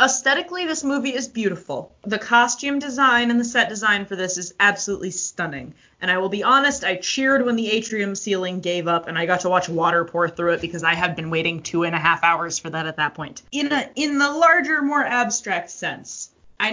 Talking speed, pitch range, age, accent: 225 wpm, 175-240 Hz, 20-39, American